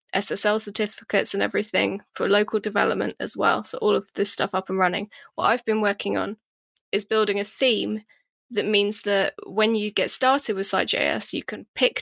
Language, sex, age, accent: English, female, 10-29, British